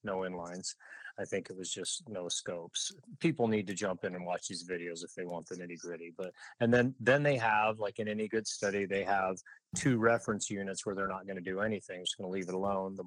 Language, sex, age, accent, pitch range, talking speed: English, male, 30-49, American, 95-115 Hz, 250 wpm